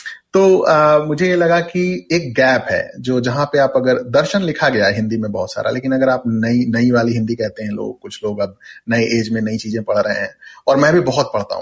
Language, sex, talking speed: Hindi, male, 250 wpm